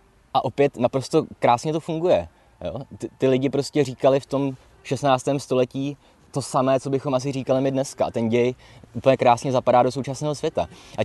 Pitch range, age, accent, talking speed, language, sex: 105-130 Hz, 20-39, native, 180 wpm, Czech, male